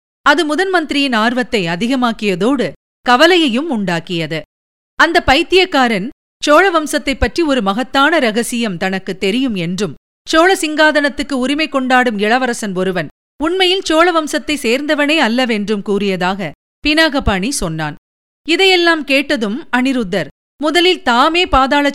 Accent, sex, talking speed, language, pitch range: native, female, 100 wpm, Tamil, 210-300 Hz